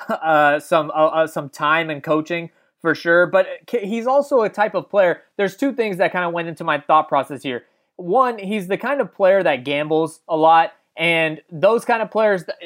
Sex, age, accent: male, 20-39, American